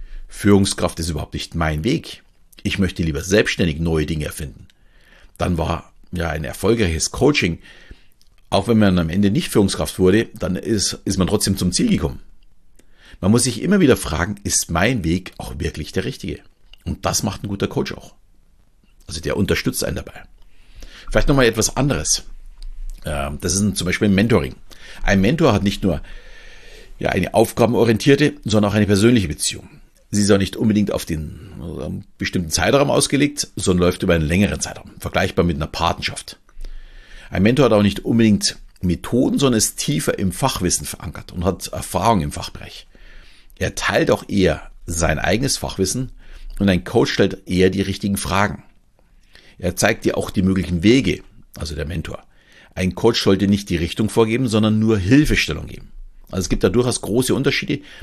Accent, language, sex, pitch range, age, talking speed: German, German, male, 85-110 Hz, 60-79, 170 wpm